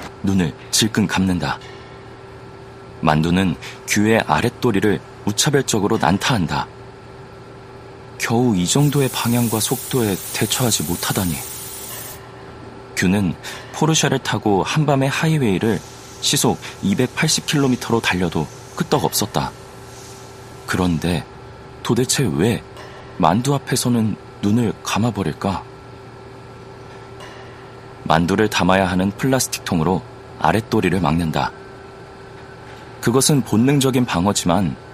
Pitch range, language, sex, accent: 90-130 Hz, Korean, male, native